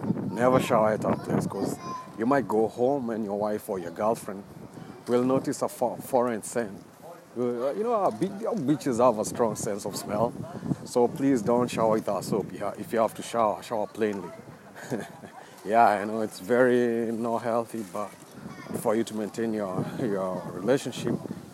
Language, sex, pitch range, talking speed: English, male, 105-125 Hz, 165 wpm